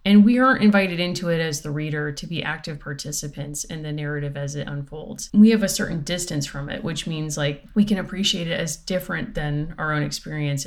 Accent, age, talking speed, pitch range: American, 30-49, 220 wpm, 145-180 Hz